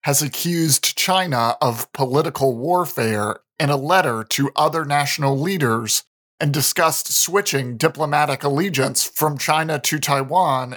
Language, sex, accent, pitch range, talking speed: English, male, American, 130-160 Hz, 125 wpm